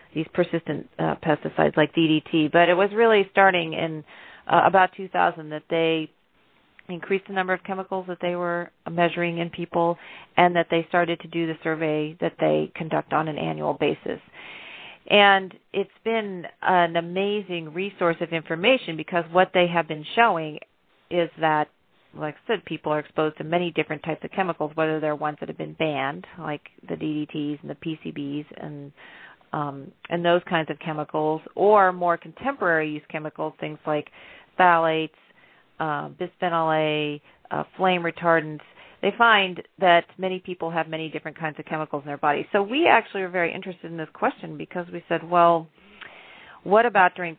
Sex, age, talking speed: female, 40-59, 170 wpm